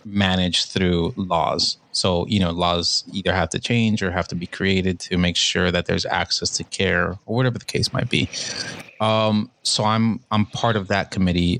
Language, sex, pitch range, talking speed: English, male, 95-110 Hz, 195 wpm